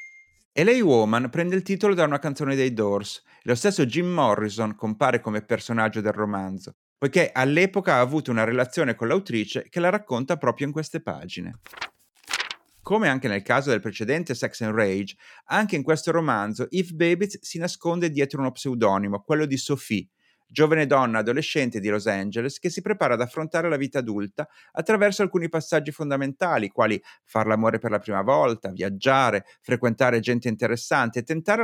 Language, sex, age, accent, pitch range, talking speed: Italian, male, 30-49, native, 110-155 Hz, 170 wpm